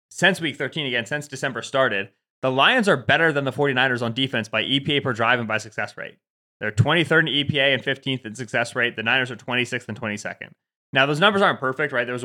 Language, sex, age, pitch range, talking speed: English, male, 20-39, 115-140 Hz, 230 wpm